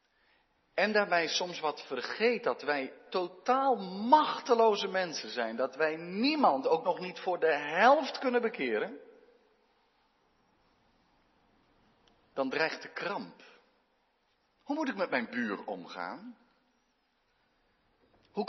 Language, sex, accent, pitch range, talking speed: Dutch, male, Dutch, 190-260 Hz, 110 wpm